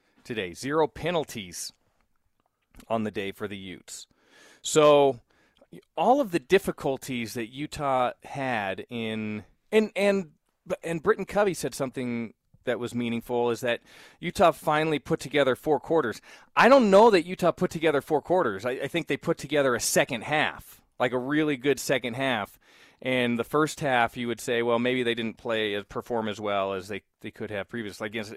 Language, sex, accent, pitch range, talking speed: English, male, American, 115-150 Hz, 175 wpm